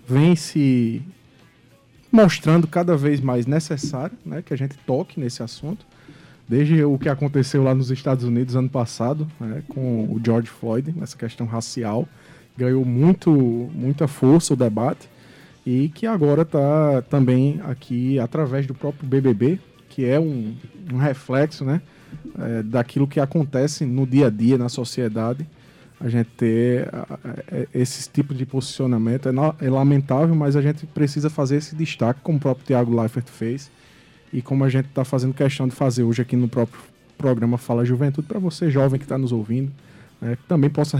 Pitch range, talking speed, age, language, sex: 125-150 Hz, 165 wpm, 20-39, Portuguese, male